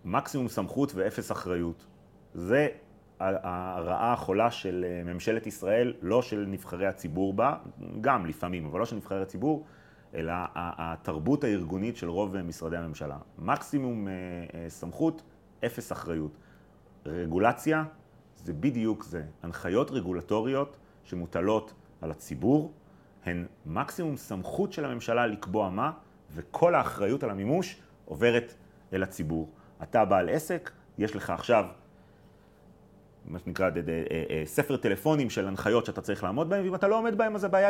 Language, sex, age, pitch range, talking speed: Hebrew, male, 30-49, 90-135 Hz, 125 wpm